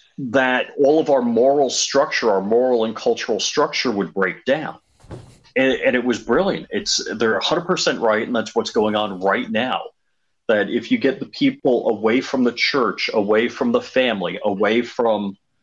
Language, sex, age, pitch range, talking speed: English, male, 30-49, 105-145 Hz, 175 wpm